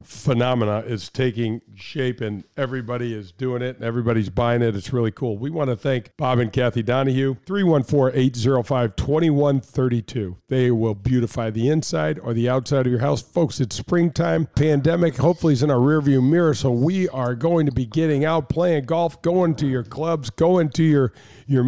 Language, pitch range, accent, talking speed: English, 120-150 Hz, American, 175 wpm